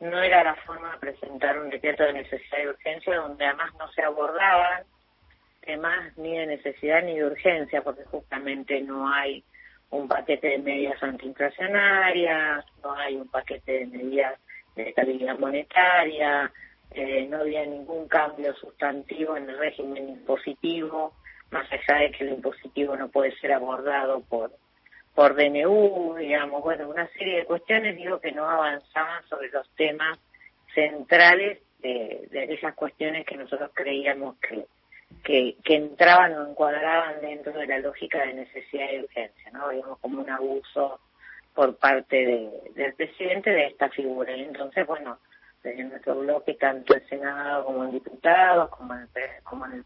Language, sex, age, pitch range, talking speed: Spanish, female, 30-49, 135-160 Hz, 155 wpm